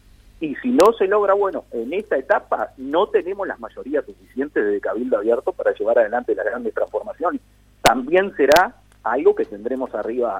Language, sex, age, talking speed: Spanish, male, 40-59, 165 wpm